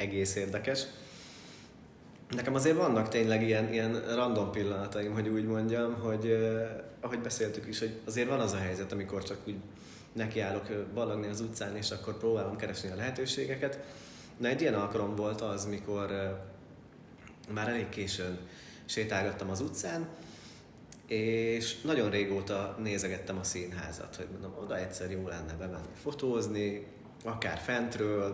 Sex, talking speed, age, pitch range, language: male, 140 wpm, 30-49, 100-120 Hz, Hungarian